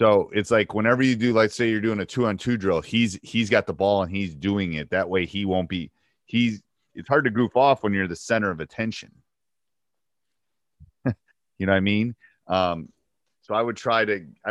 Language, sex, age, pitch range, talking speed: English, male, 30-49, 85-115 Hz, 210 wpm